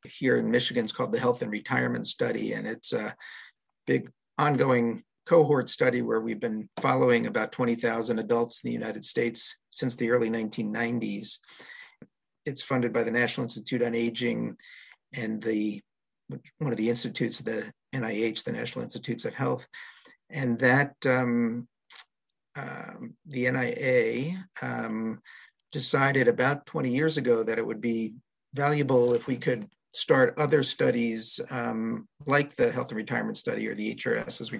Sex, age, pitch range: male, 50-69, 115-135 Hz